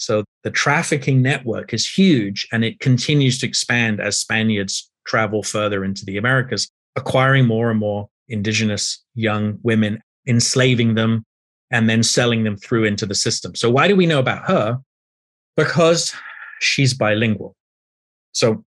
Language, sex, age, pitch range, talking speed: English, male, 30-49, 110-135 Hz, 145 wpm